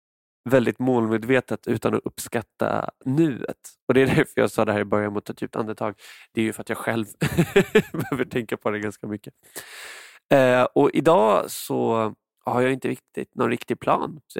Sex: male